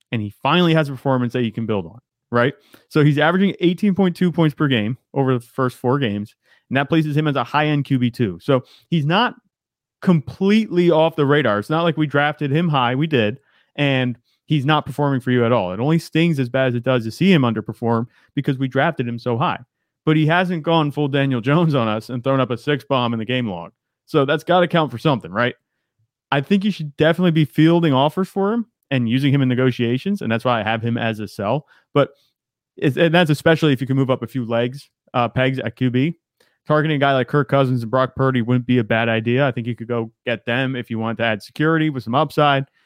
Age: 30-49